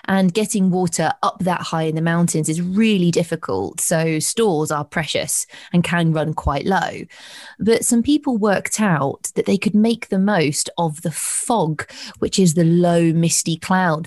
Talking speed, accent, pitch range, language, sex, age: 175 wpm, British, 165-215 Hz, English, female, 20-39